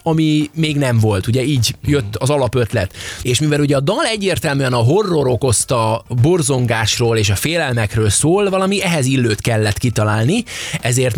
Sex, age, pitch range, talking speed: male, 20-39, 115-155 Hz, 155 wpm